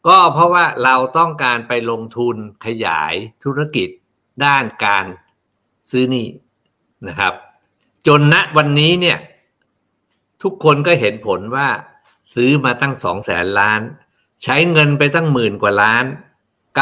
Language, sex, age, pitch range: Thai, male, 60-79, 110-150 Hz